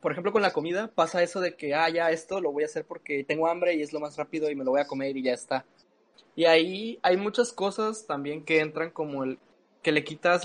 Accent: Mexican